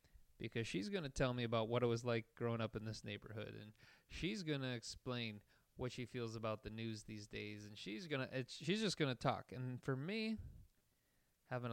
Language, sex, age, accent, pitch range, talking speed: English, male, 30-49, American, 110-140 Hz, 215 wpm